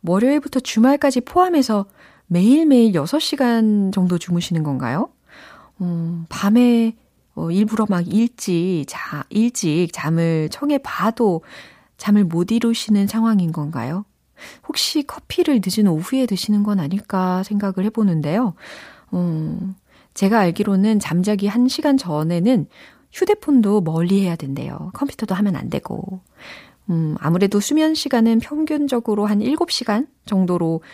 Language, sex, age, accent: Korean, female, 40-59, native